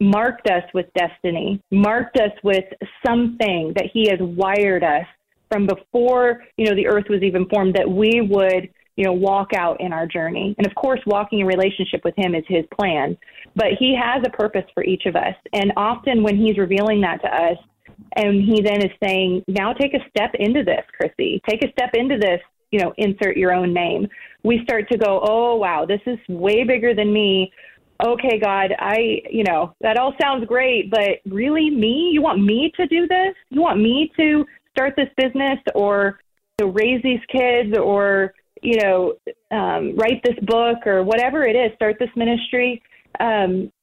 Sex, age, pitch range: female, 30-49, 195-245 Hz